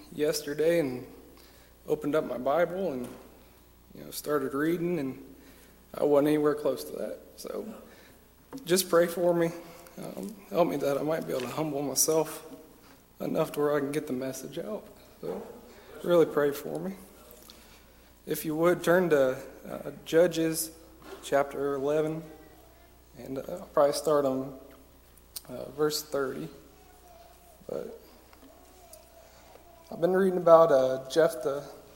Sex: male